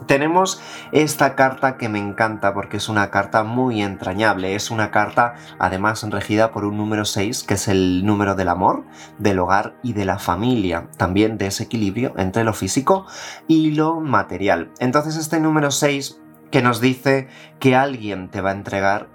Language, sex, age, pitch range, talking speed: Spanish, male, 30-49, 95-130 Hz, 175 wpm